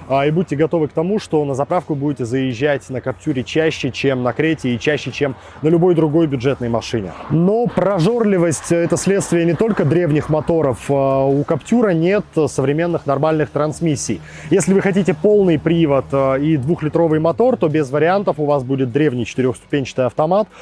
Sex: male